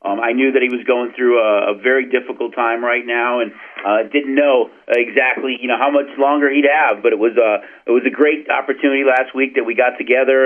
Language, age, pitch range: English, 40-59, 125-145 Hz